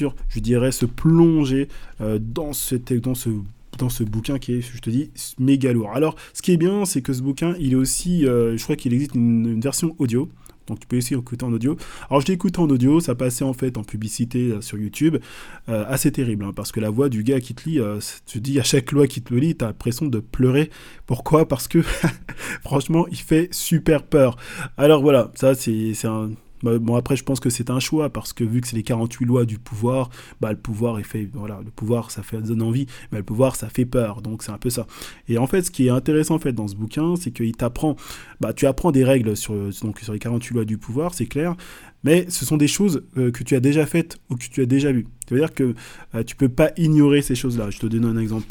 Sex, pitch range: male, 115-145 Hz